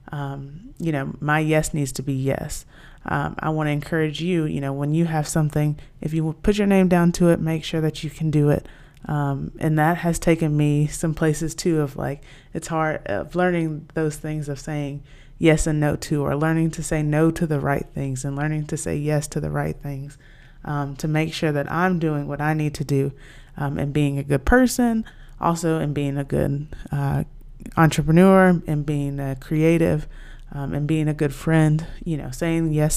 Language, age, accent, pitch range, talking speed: English, 20-39, American, 140-165 Hz, 215 wpm